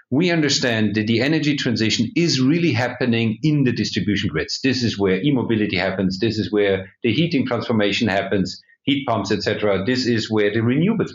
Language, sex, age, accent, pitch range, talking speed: English, male, 50-69, German, 105-130 Hz, 185 wpm